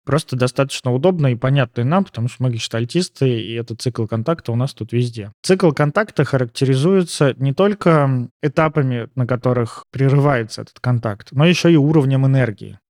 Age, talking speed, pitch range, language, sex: 20-39, 170 wpm, 120-150 Hz, Russian, male